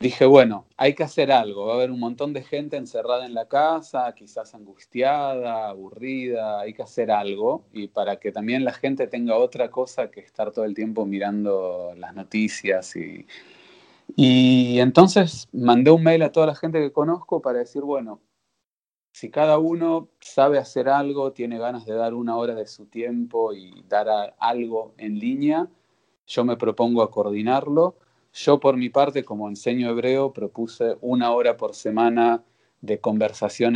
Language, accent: Spanish, Argentinian